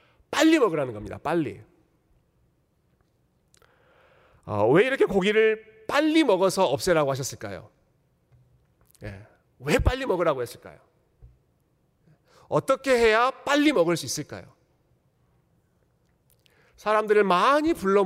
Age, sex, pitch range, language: 40-59, male, 135-210 Hz, Korean